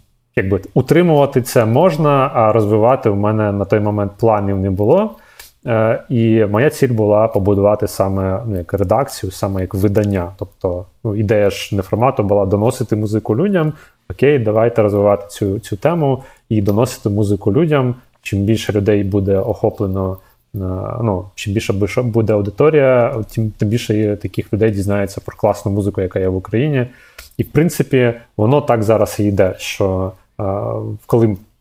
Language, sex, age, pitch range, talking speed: Ukrainian, male, 30-49, 100-120 Hz, 150 wpm